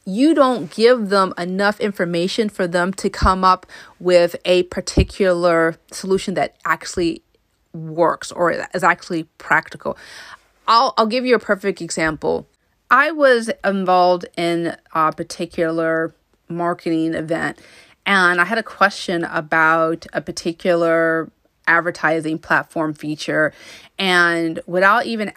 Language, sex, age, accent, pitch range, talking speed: English, female, 30-49, American, 170-200 Hz, 120 wpm